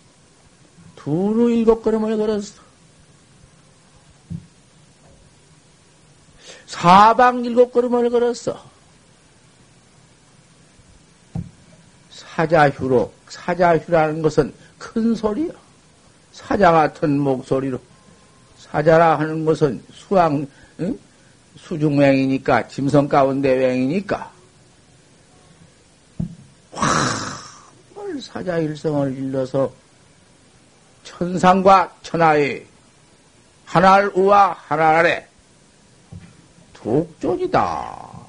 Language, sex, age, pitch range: Korean, male, 50-69, 140-185 Hz